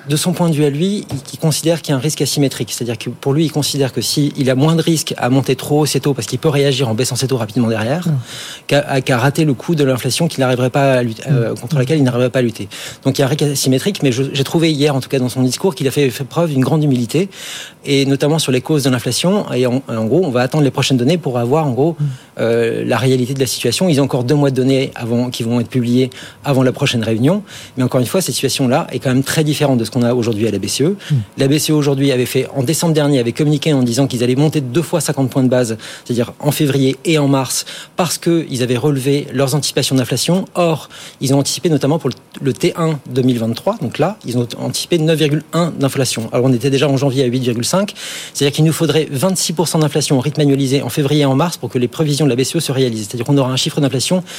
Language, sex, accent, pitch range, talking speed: French, male, French, 130-155 Hz, 265 wpm